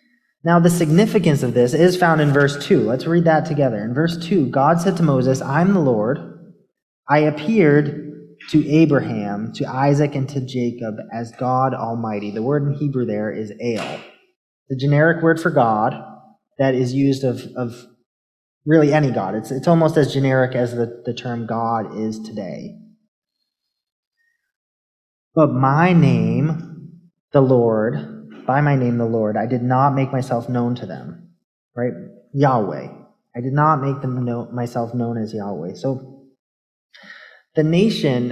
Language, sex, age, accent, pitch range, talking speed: English, male, 30-49, American, 120-165 Hz, 155 wpm